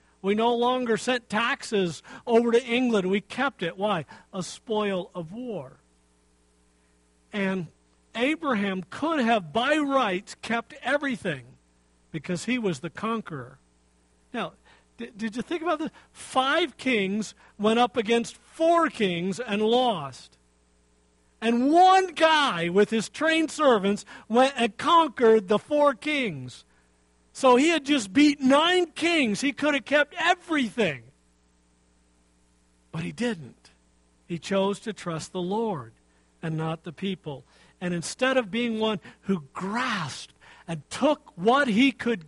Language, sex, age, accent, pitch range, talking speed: English, male, 50-69, American, 160-250 Hz, 135 wpm